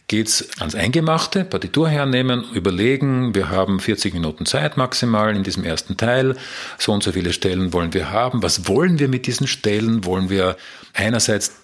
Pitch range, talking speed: 100-120 Hz, 175 wpm